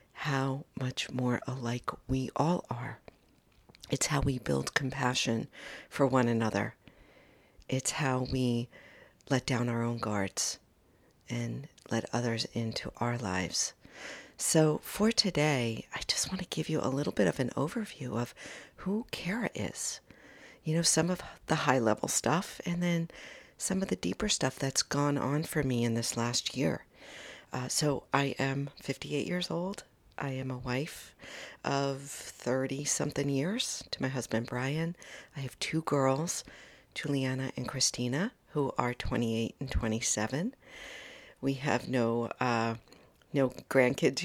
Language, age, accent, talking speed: English, 50-69, American, 145 wpm